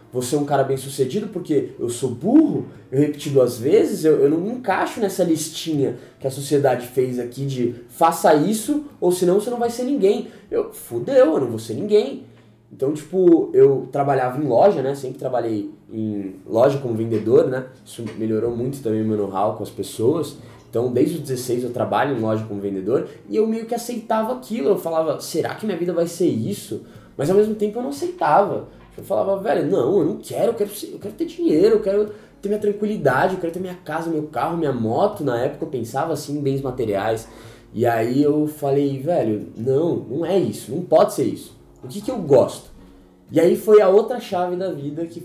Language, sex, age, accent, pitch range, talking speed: Portuguese, male, 20-39, Brazilian, 125-195 Hz, 215 wpm